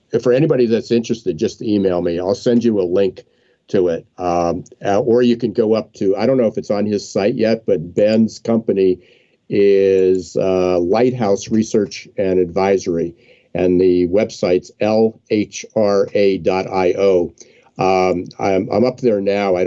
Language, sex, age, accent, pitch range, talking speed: English, male, 50-69, American, 90-120 Hz, 150 wpm